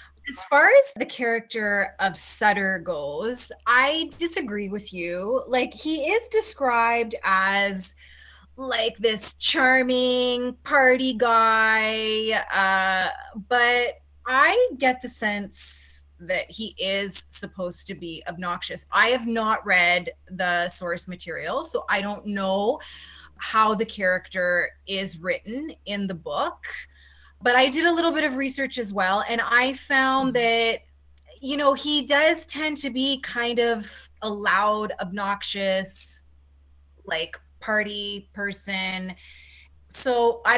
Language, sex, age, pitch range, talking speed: English, female, 20-39, 180-250 Hz, 125 wpm